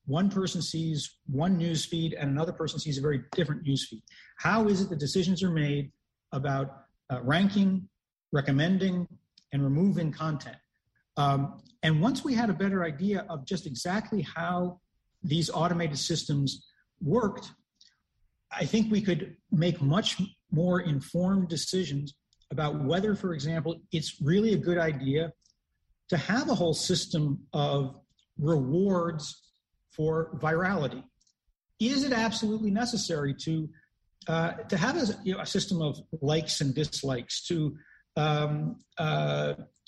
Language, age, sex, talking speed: English, 50-69, male, 140 wpm